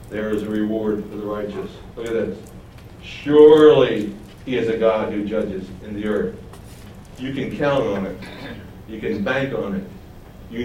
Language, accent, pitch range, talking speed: English, American, 105-160 Hz, 175 wpm